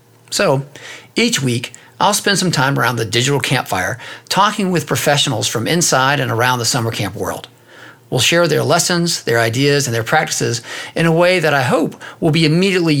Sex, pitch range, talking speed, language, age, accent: male, 120-165 Hz, 185 wpm, English, 50-69, American